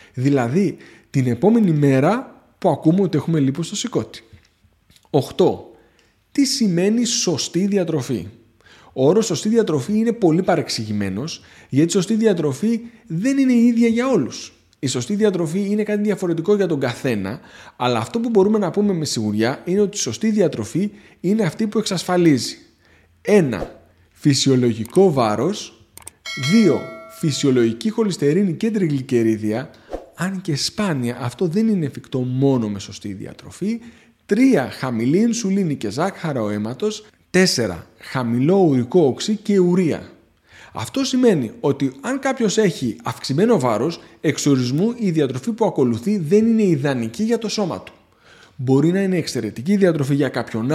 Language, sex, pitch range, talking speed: Greek, male, 130-210 Hz, 140 wpm